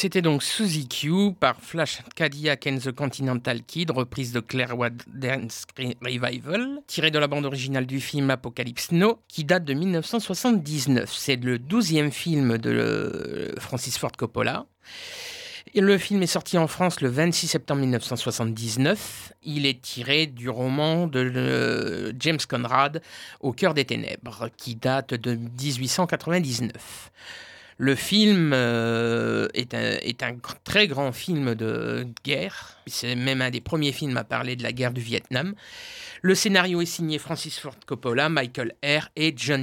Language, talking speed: French, 150 wpm